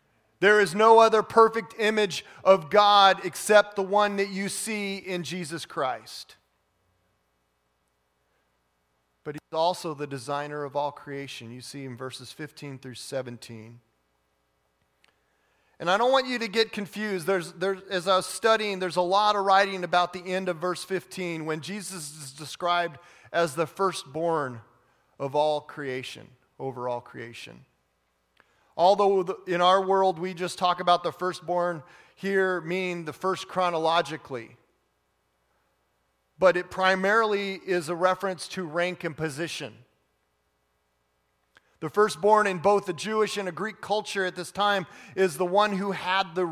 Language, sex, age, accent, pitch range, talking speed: English, male, 40-59, American, 135-195 Hz, 145 wpm